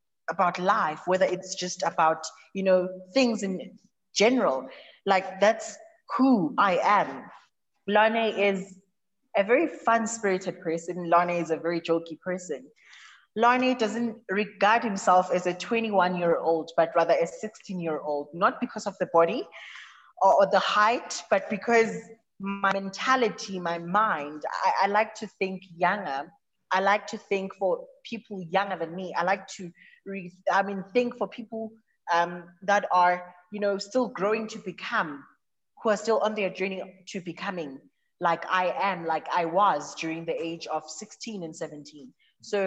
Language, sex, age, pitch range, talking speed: English, female, 20-39, 175-220 Hz, 150 wpm